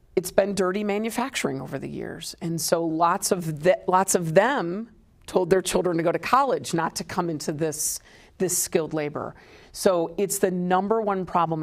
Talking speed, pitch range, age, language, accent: 185 wpm, 165-200 Hz, 40-59, English, American